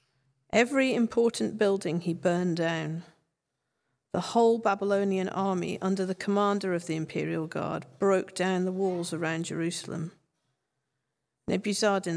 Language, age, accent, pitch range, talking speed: English, 50-69, British, 160-200 Hz, 120 wpm